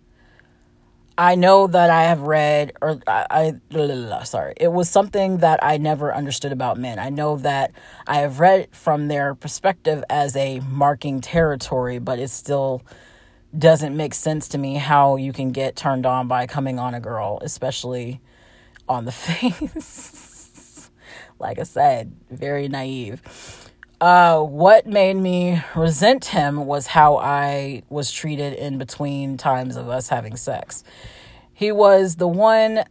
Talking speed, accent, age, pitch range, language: 150 wpm, American, 30-49, 135-175 Hz, English